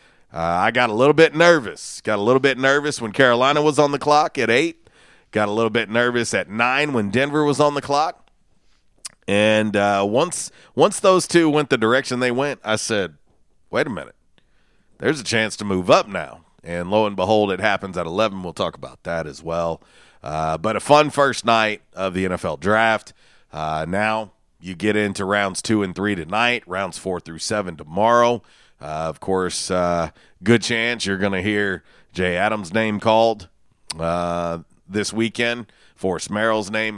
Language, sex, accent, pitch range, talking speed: English, male, American, 90-115 Hz, 185 wpm